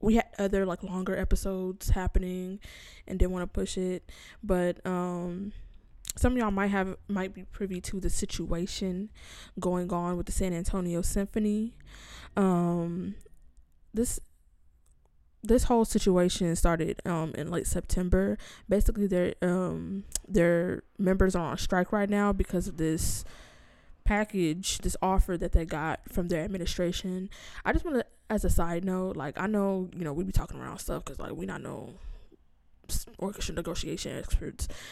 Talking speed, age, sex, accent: 160 wpm, 20-39, female, American